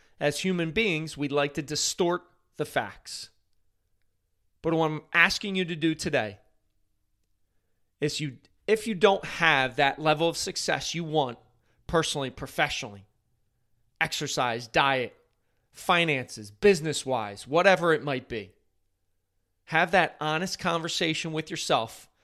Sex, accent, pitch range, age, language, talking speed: male, American, 100-160 Hz, 30-49, English, 120 wpm